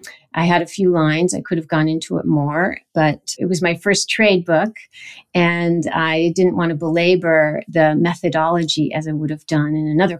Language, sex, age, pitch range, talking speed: English, female, 50-69, 160-190 Hz, 200 wpm